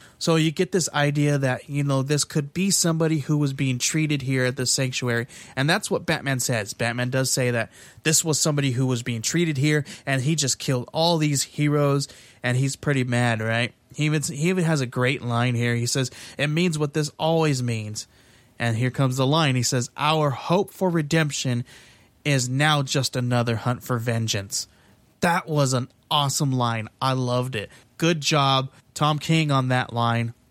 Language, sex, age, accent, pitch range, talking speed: English, male, 20-39, American, 125-150 Hz, 195 wpm